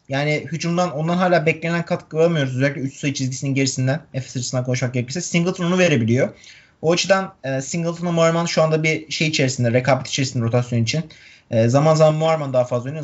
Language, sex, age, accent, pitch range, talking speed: Turkish, male, 30-49, native, 140-185 Hz, 170 wpm